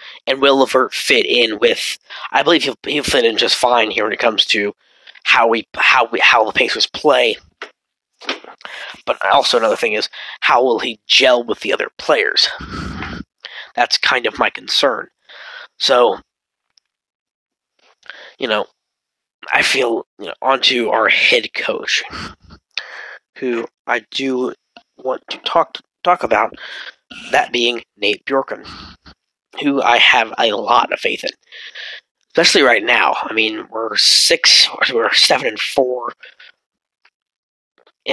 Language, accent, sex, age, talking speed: English, American, male, 20-39, 140 wpm